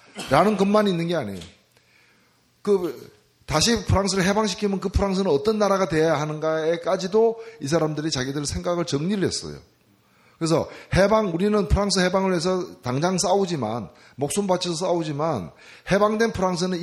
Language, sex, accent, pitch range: Korean, male, native, 155-195 Hz